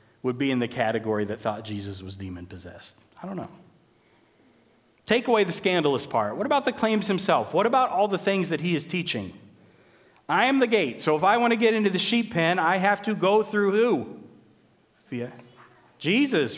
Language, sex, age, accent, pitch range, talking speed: English, male, 40-59, American, 155-225 Hz, 190 wpm